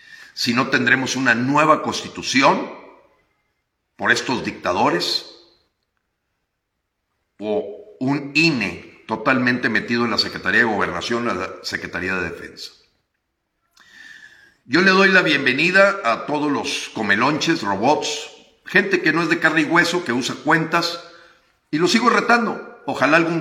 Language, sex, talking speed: Spanish, male, 130 wpm